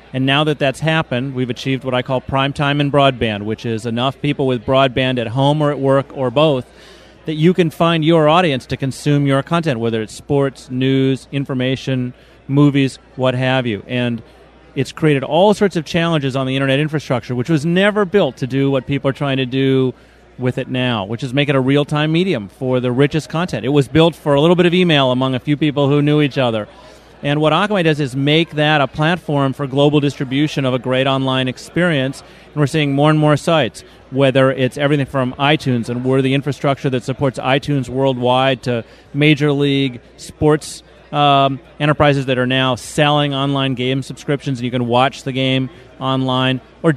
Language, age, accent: English, 30-49, American